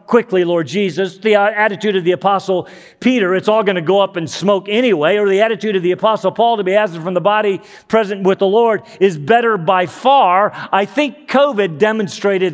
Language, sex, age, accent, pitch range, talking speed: English, male, 40-59, American, 120-185 Hz, 205 wpm